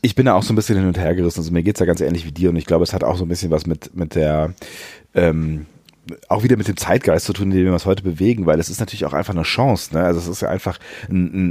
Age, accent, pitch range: 30-49, German, 85-115 Hz